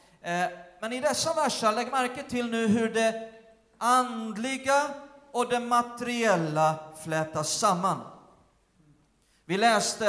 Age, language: 40-59, Swedish